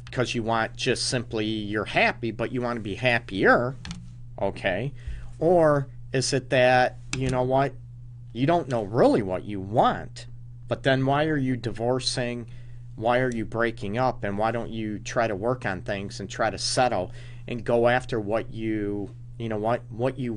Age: 40-59